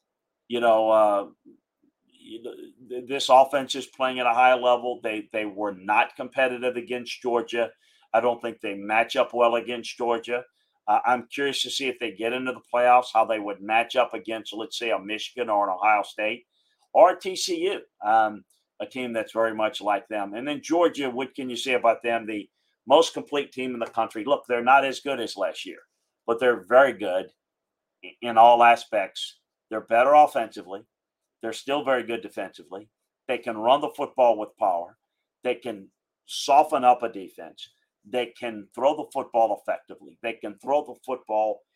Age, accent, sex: 50-69, American, male